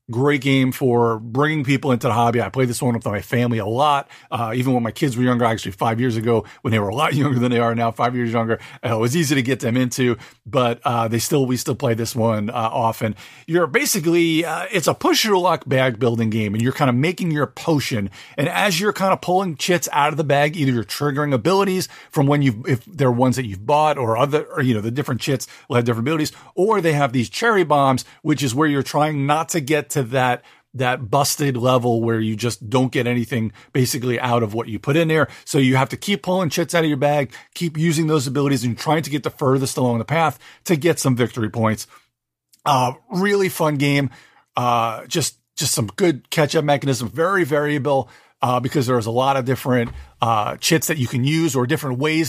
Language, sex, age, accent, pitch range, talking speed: English, male, 40-59, American, 120-150 Hz, 235 wpm